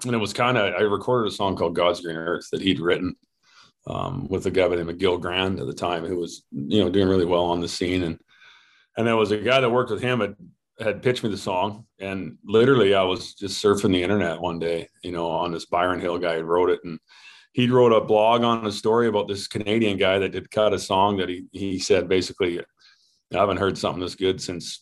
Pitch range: 90-110 Hz